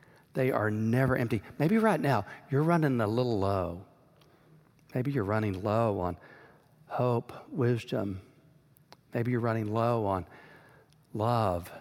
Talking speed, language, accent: 125 wpm, English, American